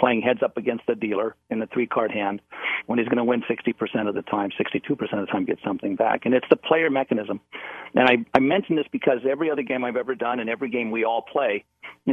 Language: English